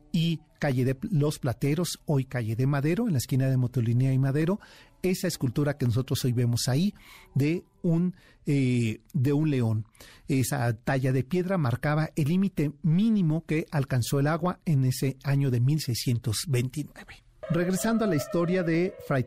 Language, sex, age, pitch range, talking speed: Spanish, male, 40-59, 120-150 Hz, 155 wpm